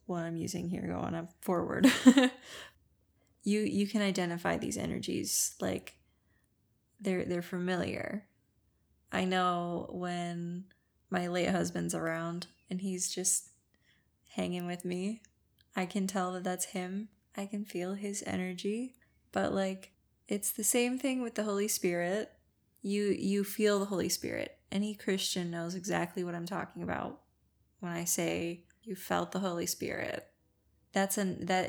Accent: American